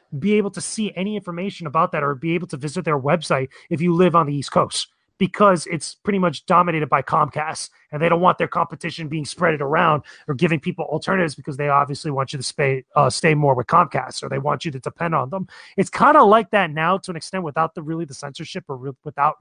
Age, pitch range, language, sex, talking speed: 30-49, 150-185 Hz, English, male, 245 wpm